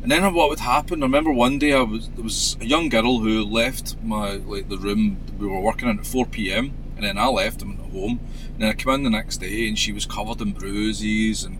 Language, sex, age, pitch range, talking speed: English, male, 30-49, 75-125 Hz, 270 wpm